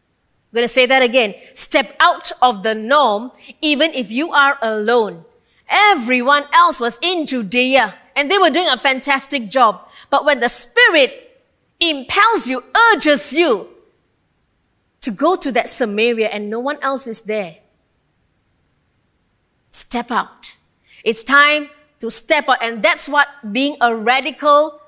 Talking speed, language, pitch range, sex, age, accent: 145 wpm, English, 230-310 Hz, female, 20-39, Malaysian